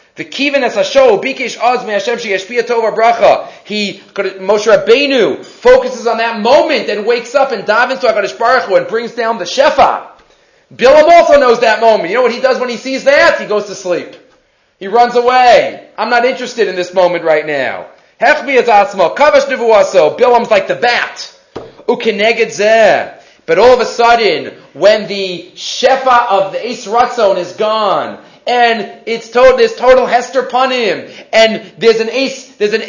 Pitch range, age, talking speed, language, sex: 220-280 Hz, 30-49, 160 wpm, English, male